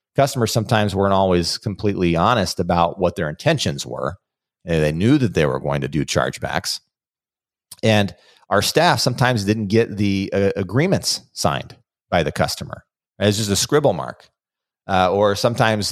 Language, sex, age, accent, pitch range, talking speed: English, male, 40-59, American, 85-110 Hz, 155 wpm